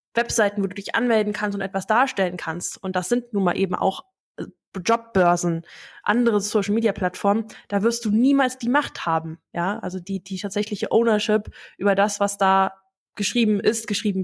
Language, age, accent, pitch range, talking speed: German, 20-39, German, 190-225 Hz, 175 wpm